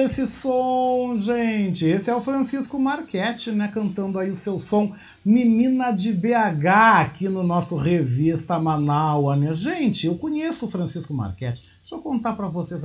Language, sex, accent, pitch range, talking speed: Portuguese, male, Brazilian, 130-205 Hz, 160 wpm